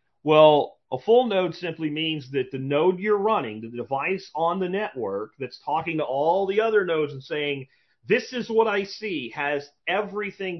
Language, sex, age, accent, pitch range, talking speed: English, male, 40-59, American, 130-180 Hz, 180 wpm